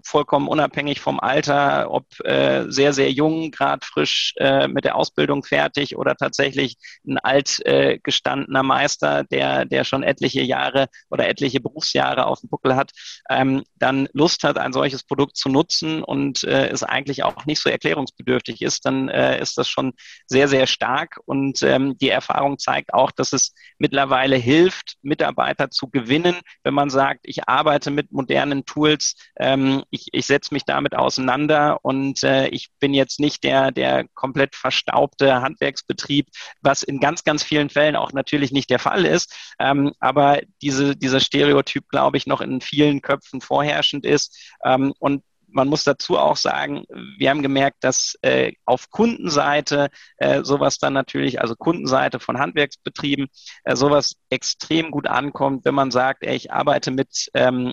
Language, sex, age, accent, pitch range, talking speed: German, male, 30-49, German, 130-145 Hz, 165 wpm